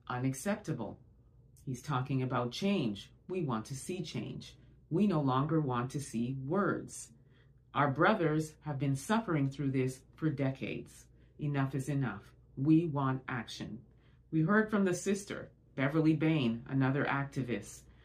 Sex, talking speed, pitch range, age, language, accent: female, 135 wpm, 130-175 Hz, 30-49, English, American